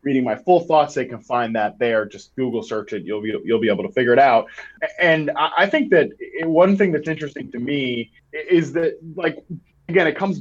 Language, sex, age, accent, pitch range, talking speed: English, male, 20-39, American, 140-195 Hz, 220 wpm